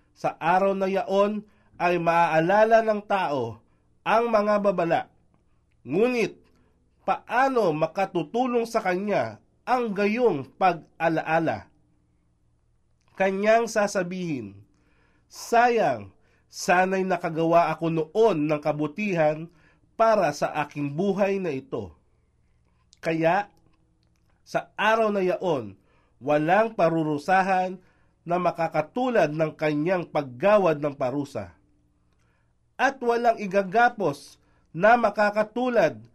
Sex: male